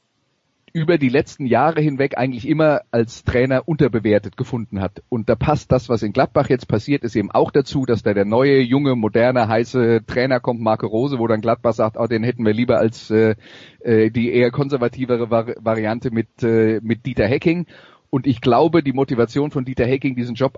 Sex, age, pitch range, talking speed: male, 30-49, 115-140 Hz, 190 wpm